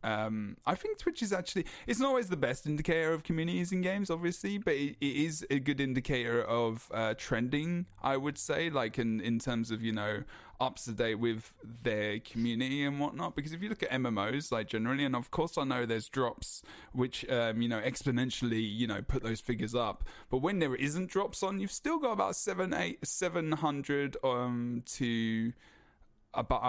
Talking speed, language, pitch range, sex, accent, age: 200 wpm, English, 110-140 Hz, male, British, 10-29